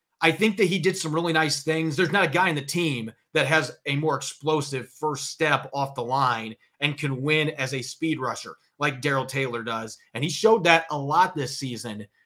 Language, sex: English, male